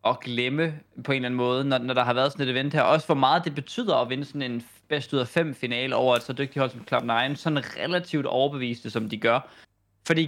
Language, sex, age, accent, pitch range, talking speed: Danish, male, 20-39, native, 130-155 Hz, 255 wpm